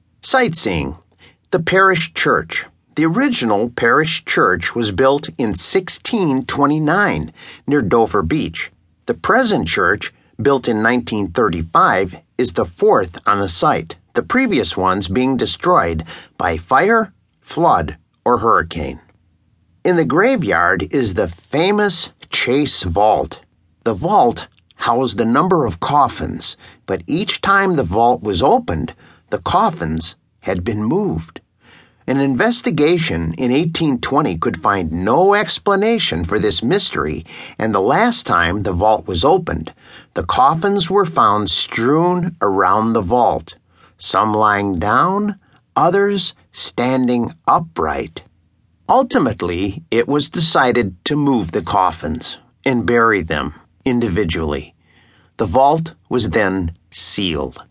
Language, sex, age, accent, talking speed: English, male, 50-69, American, 120 wpm